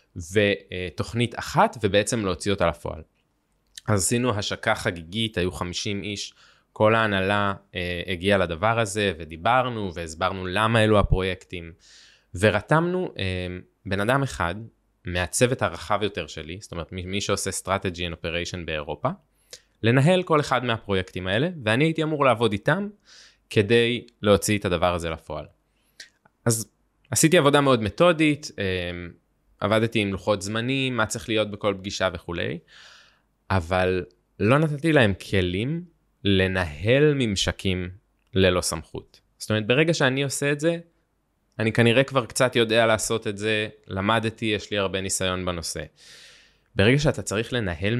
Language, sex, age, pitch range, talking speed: Hebrew, male, 20-39, 90-120 Hz, 135 wpm